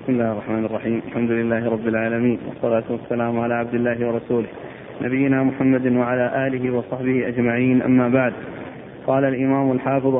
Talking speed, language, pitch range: 145 wpm, Arabic, 130-145 Hz